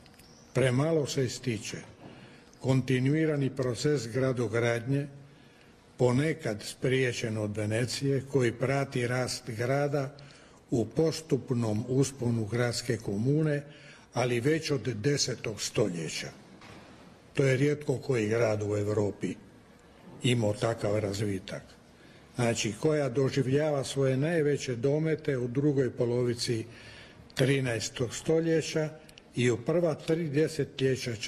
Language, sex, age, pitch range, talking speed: Croatian, male, 60-79, 120-145 Hz, 90 wpm